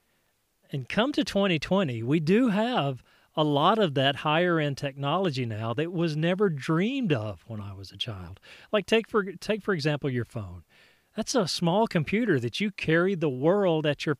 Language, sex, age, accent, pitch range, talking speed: English, male, 40-59, American, 125-180 Hz, 185 wpm